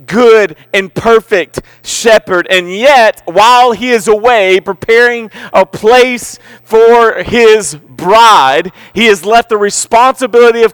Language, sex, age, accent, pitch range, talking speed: English, male, 40-59, American, 155-215 Hz, 125 wpm